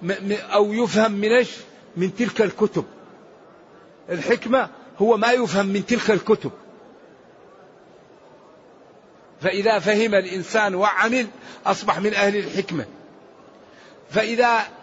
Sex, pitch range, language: male, 190-225 Hz, Arabic